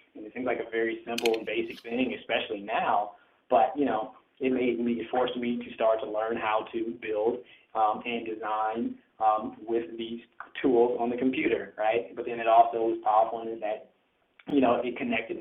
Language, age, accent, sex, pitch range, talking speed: English, 20-39, American, male, 110-125 Hz, 200 wpm